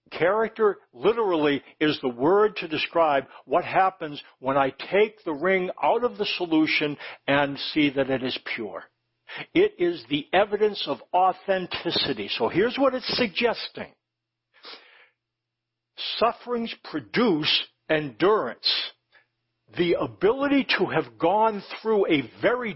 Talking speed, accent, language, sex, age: 120 wpm, American, English, male, 60-79